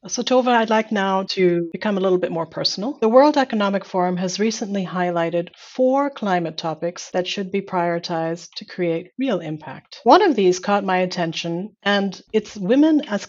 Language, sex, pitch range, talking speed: English, female, 175-225 Hz, 180 wpm